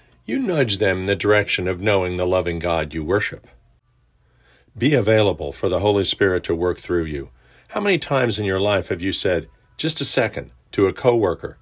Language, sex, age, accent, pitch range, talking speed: English, male, 50-69, American, 90-115 Hz, 195 wpm